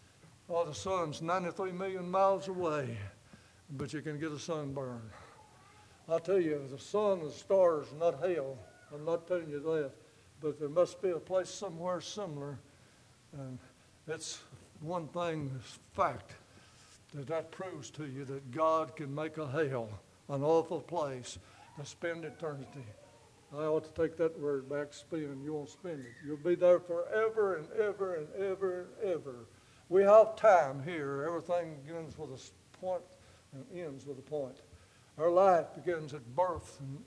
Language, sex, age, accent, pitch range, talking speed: English, male, 60-79, American, 125-170 Hz, 160 wpm